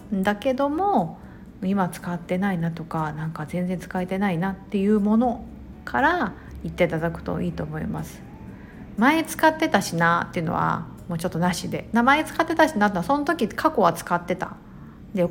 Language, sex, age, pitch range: Japanese, female, 50-69, 175-235 Hz